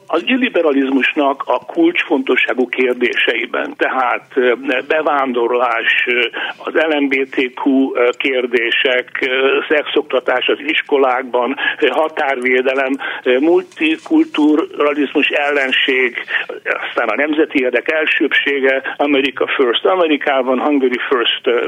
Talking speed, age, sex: 75 wpm, 60-79, male